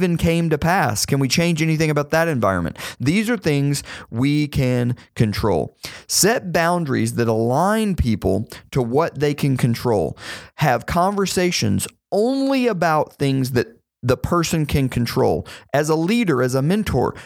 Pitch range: 120-165 Hz